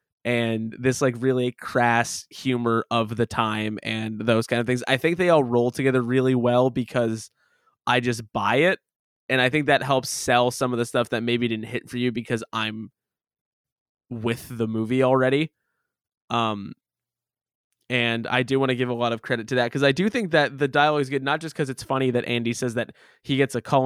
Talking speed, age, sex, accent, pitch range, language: 210 wpm, 20-39, male, American, 115-130 Hz, English